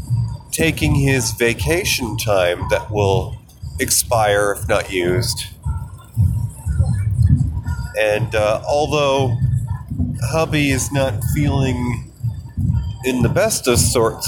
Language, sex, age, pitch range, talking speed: English, male, 30-49, 105-135 Hz, 90 wpm